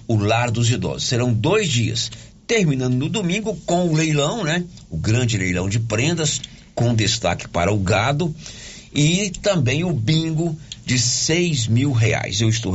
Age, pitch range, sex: 60-79, 110-140 Hz, male